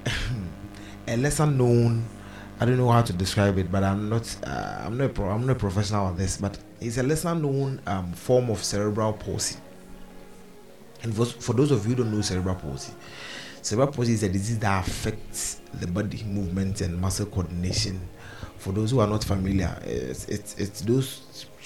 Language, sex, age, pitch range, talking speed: English, male, 30-49, 100-120 Hz, 185 wpm